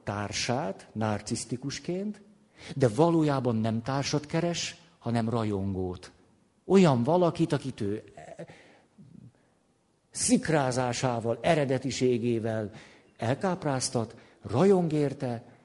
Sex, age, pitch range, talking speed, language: male, 50-69, 120-165 Hz, 65 wpm, Hungarian